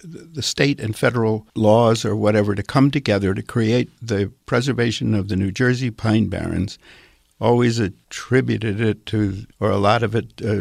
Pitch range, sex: 100-115 Hz, male